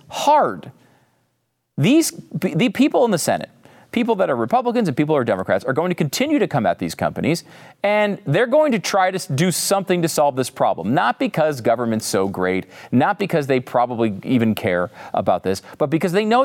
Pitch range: 135-210 Hz